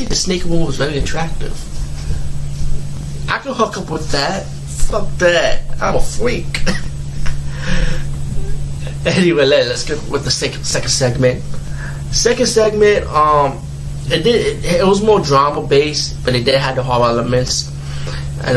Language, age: English, 20-39